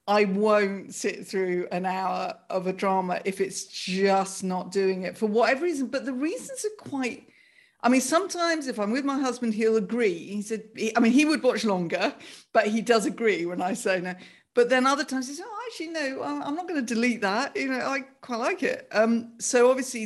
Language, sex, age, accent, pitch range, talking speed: English, female, 50-69, British, 190-270 Hz, 220 wpm